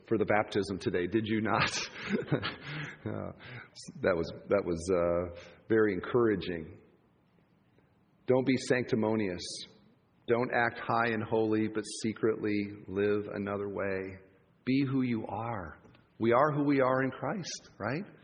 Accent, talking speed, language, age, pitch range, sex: American, 130 wpm, English, 40-59, 115-170 Hz, male